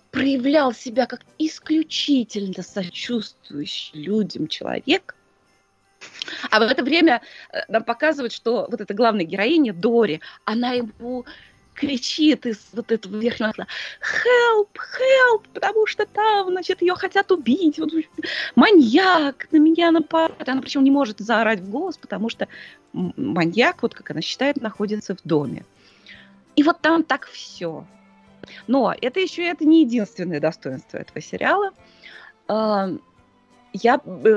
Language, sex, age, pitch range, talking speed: Russian, female, 20-39, 190-310 Hz, 130 wpm